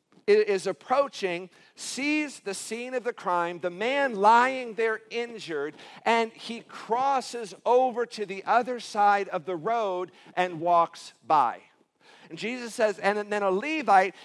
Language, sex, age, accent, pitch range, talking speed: English, male, 50-69, American, 175-230 Hz, 145 wpm